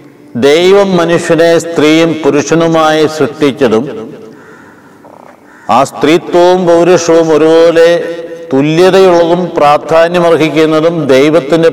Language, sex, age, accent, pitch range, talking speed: Malayalam, male, 50-69, native, 145-185 Hz, 60 wpm